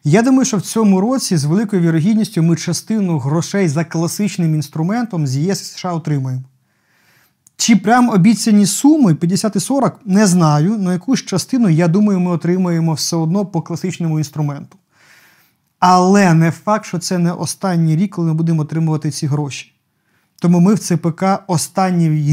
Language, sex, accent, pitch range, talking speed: Ukrainian, male, native, 160-195 Hz, 155 wpm